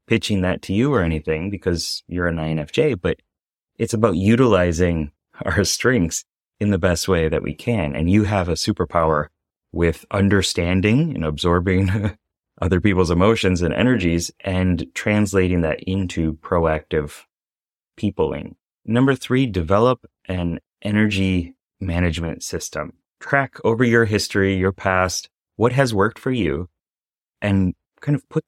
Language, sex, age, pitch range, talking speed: English, male, 30-49, 85-105 Hz, 135 wpm